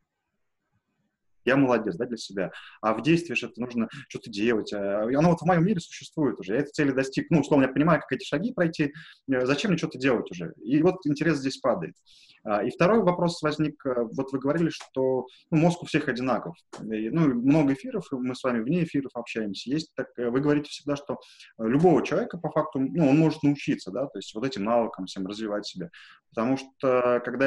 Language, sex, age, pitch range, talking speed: Russian, male, 20-39, 115-145 Hz, 200 wpm